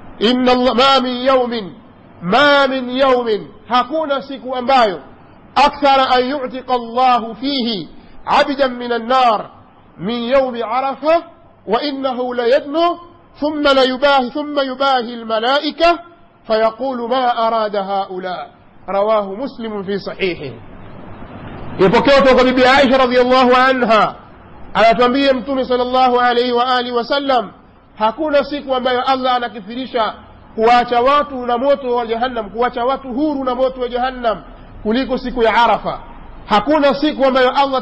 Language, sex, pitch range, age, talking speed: Swahili, male, 240-270 Hz, 50-69, 120 wpm